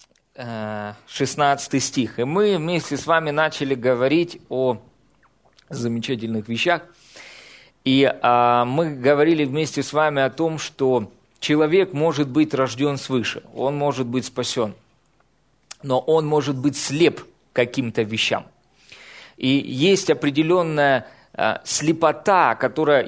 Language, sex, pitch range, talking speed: Russian, male, 130-160 Hz, 110 wpm